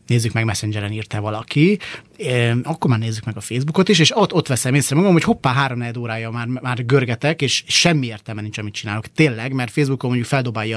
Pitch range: 115-155 Hz